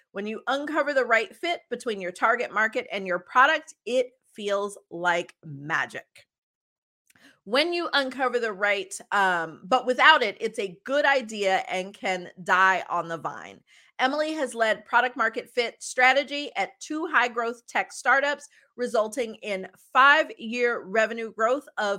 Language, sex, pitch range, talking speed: English, female, 195-280 Hz, 155 wpm